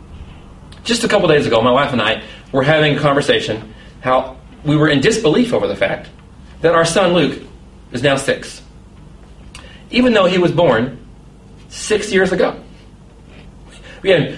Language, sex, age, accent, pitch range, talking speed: English, male, 30-49, American, 125-185 Hz, 160 wpm